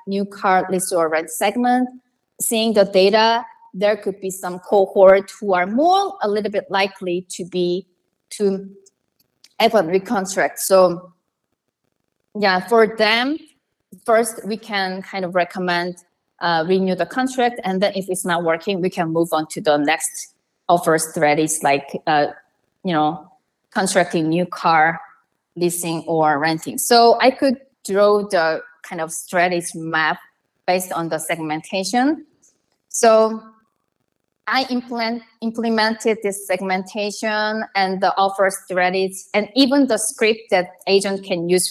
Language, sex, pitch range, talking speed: English, female, 180-220 Hz, 140 wpm